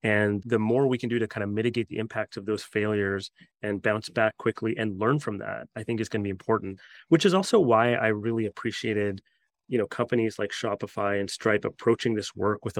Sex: male